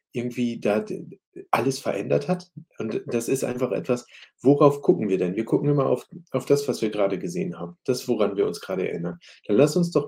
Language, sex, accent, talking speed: German, male, German, 210 wpm